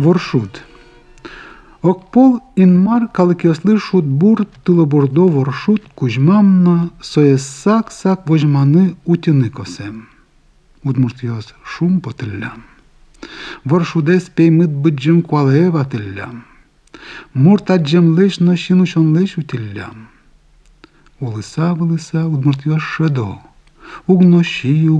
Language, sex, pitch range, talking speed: Russian, male, 135-175 Hz, 85 wpm